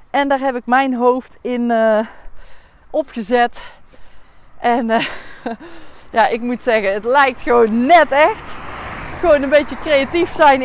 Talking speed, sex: 140 wpm, female